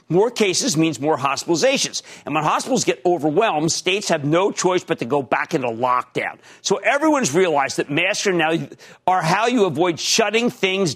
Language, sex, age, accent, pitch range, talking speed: English, male, 50-69, American, 160-245 Hz, 180 wpm